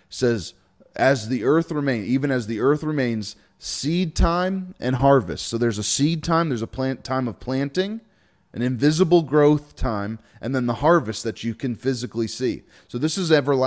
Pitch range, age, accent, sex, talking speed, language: 115-150 Hz, 30-49, American, male, 185 wpm, English